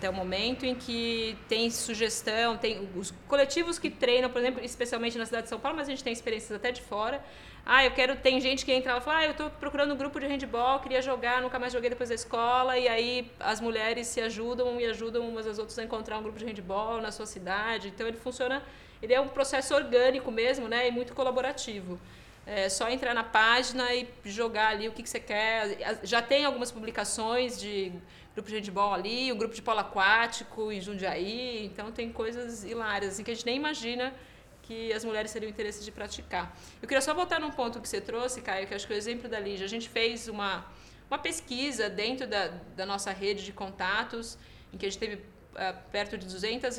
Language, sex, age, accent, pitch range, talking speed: Portuguese, female, 20-39, Brazilian, 210-245 Hz, 225 wpm